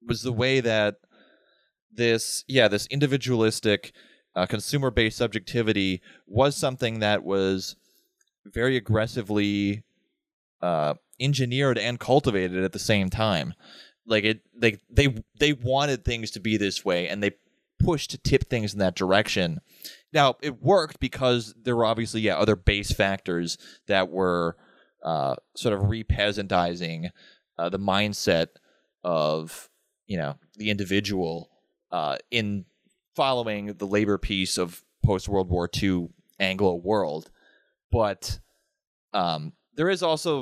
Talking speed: 130 wpm